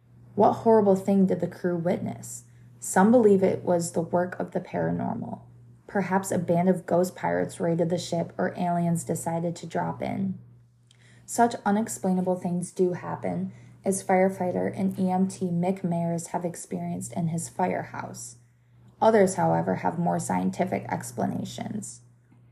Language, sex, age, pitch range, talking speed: English, female, 20-39, 120-185 Hz, 140 wpm